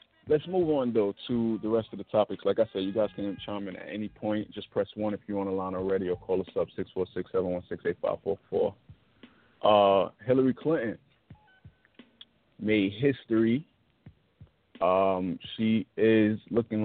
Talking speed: 155 wpm